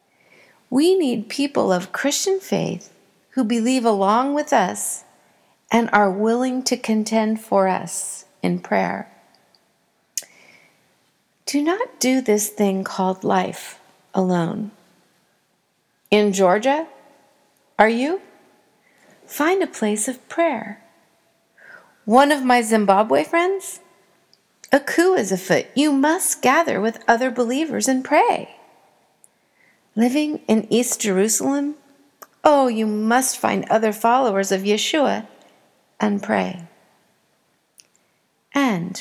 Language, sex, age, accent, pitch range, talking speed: English, female, 40-59, American, 200-275 Hz, 105 wpm